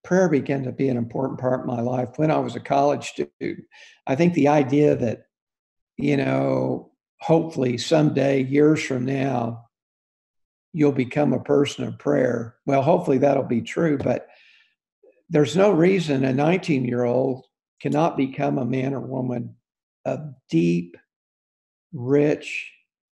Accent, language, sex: American, English, male